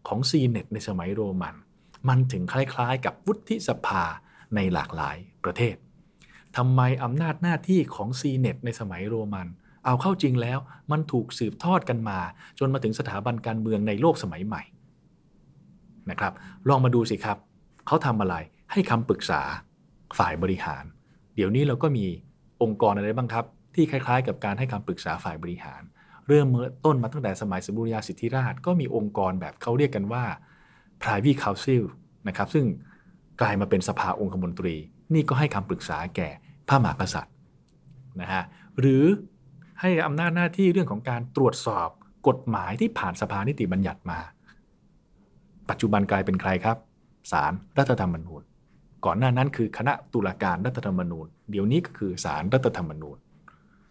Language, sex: English, male